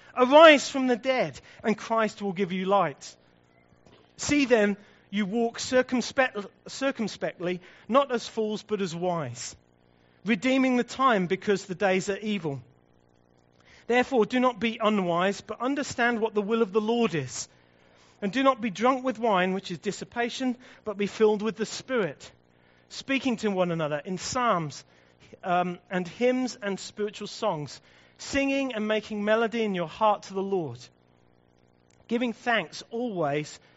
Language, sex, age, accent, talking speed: English, male, 40-59, British, 150 wpm